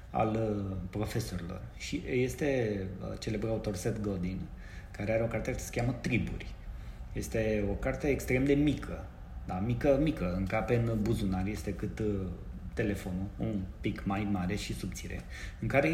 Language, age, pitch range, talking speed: Romanian, 30-49, 100-130 Hz, 150 wpm